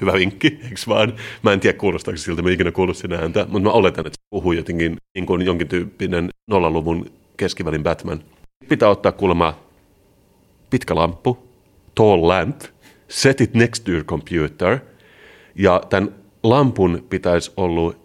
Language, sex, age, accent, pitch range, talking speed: Finnish, male, 30-49, native, 85-105 Hz, 145 wpm